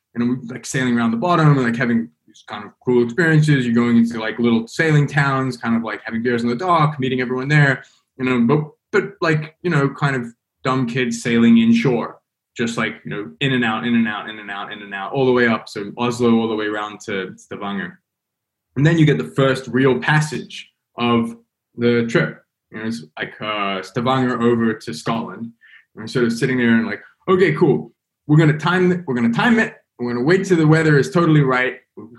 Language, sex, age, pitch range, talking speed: English, male, 20-39, 115-150 Hz, 220 wpm